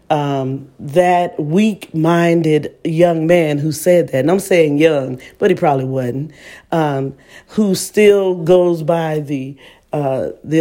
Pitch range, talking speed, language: 140-170 Hz, 135 wpm, English